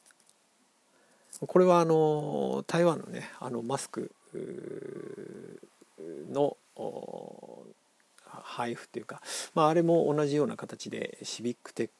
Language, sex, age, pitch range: Japanese, male, 40-59, 125-165 Hz